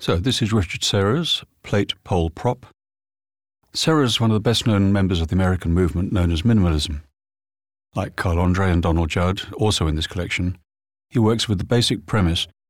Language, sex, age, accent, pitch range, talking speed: English, male, 50-69, British, 85-100 Hz, 175 wpm